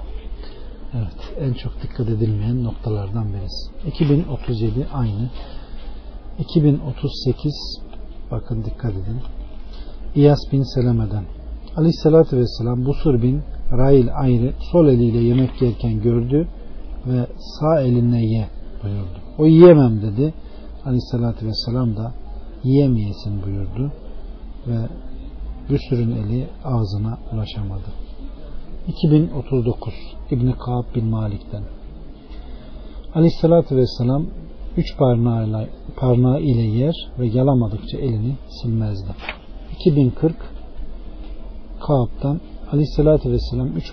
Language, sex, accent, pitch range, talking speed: Turkish, male, native, 110-140 Hz, 90 wpm